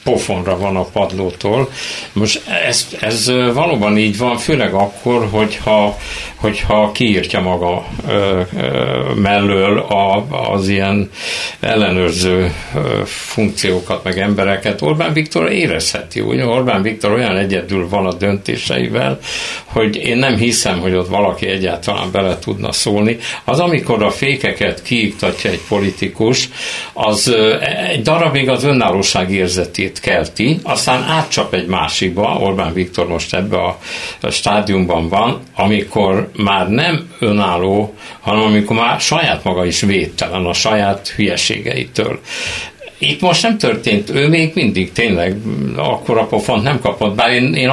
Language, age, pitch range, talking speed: Hungarian, 60-79, 95-115 Hz, 125 wpm